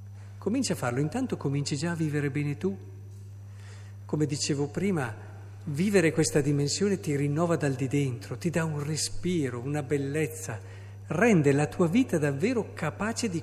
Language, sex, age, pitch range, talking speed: Italian, male, 50-69, 105-155 Hz, 150 wpm